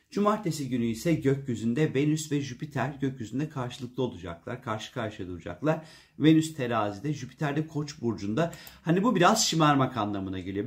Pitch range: 115-155 Hz